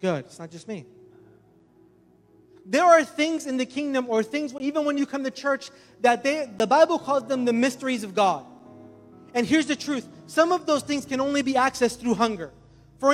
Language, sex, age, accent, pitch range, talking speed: English, male, 30-49, American, 240-295 Hz, 200 wpm